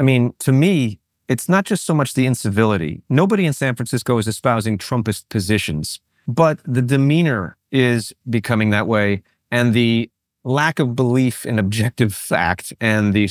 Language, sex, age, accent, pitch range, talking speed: English, male, 30-49, American, 105-145 Hz, 160 wpm